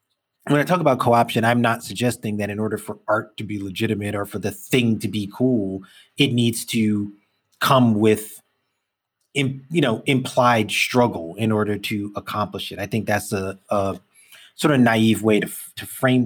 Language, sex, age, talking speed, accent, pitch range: English, male, 30-49, 180 wpm, American, 105-120 Hz